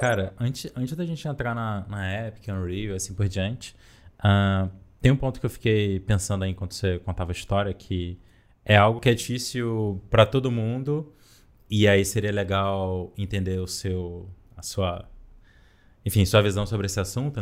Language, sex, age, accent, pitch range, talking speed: Portuguese, male, 20-39, Brazilian, 95-115 Hz, 170 wpm